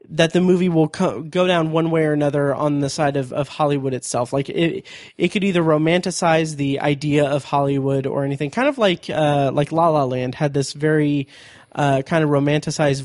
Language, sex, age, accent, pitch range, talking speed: English, male, 20-39, American, 140-165 Hz, 205 wpm